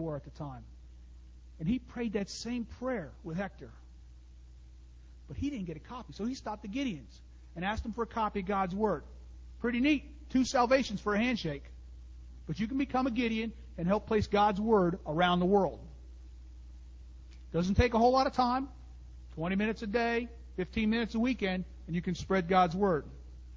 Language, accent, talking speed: English, American, 185 wpm